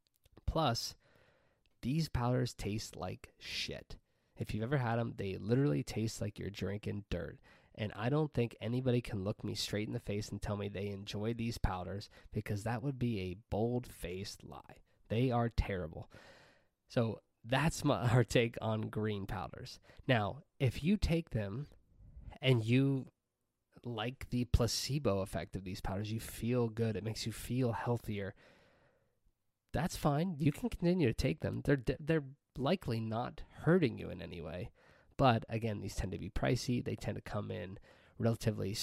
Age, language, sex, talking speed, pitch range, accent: 20-39, English, male, 165 wpm, 100-125 Hz, American